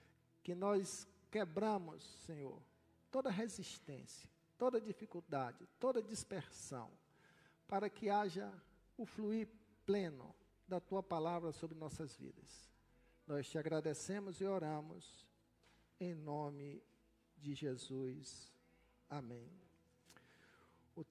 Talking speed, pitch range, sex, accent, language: 95 wpm, 135-200 Hz, male, Brazilian, Portuguese